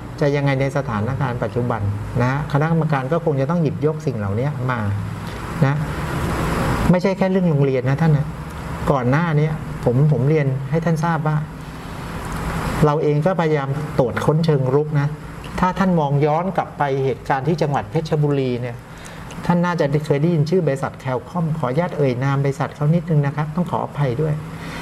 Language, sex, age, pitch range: Thai, male, 60-79, 125-155 Hz